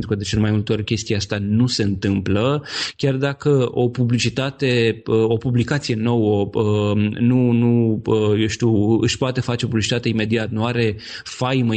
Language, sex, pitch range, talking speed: Romanian, male, 110-140 Hz, 165 wpm